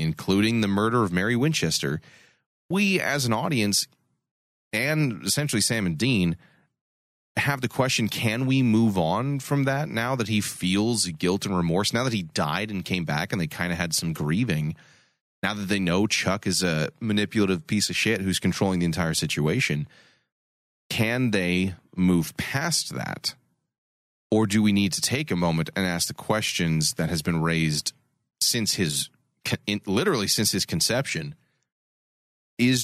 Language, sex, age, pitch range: English, male, 30-49, 85-120 Hz